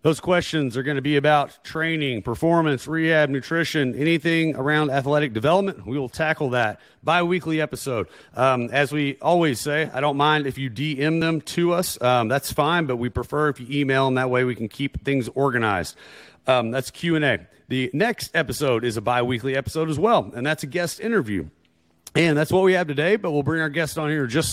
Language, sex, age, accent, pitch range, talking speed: English, male, 40-59, American, 130-155 Hz, 215 wpm